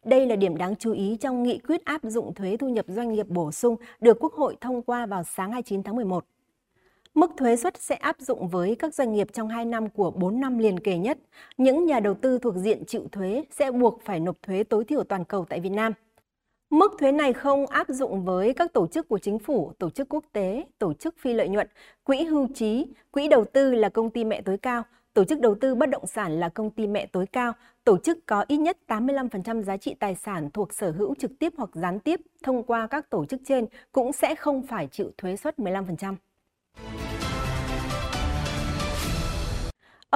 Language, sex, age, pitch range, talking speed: Vietnamese, female, 20-39, 195-270 Hz, 220 wpm